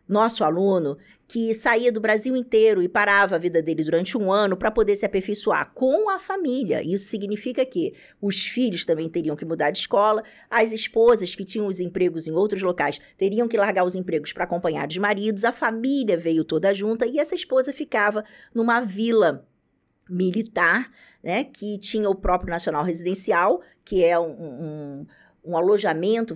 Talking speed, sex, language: 175 wpm, female, Portuguese